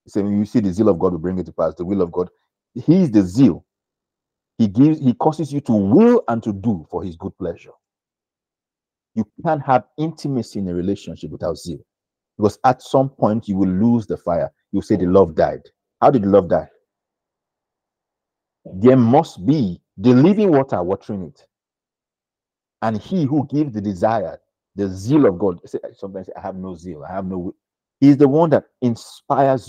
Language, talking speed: English, 190 wpm